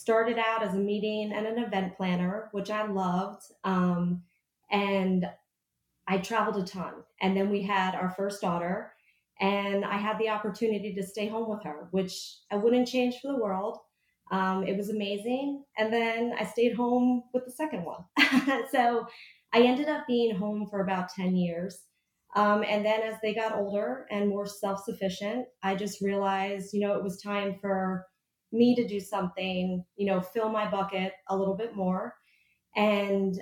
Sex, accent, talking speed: female, American, 180 wpm